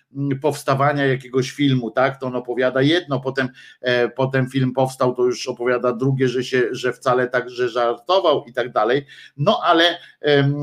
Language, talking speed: Polish, 165 wpm